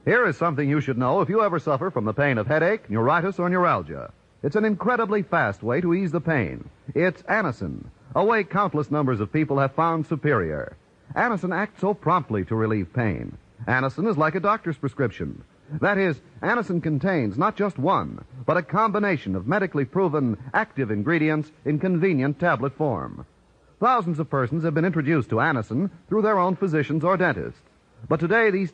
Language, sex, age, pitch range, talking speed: English, male, 40-59, 130-185 Hz, 180 wpm